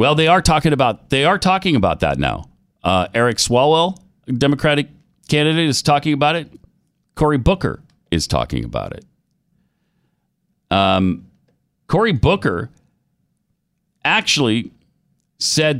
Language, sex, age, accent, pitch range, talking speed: English, male, 40-59, American, 110-165 Hz, 120 wpm